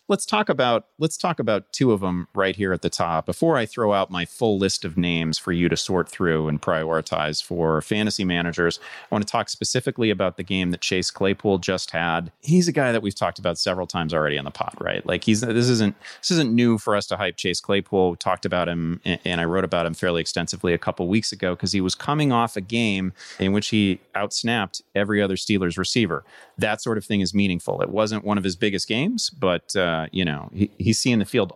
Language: English